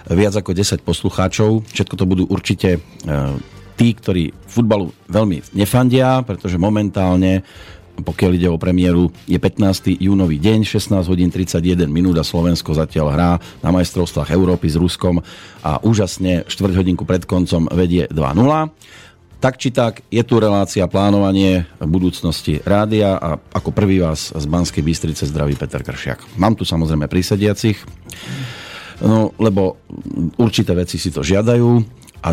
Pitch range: 85-105 Hz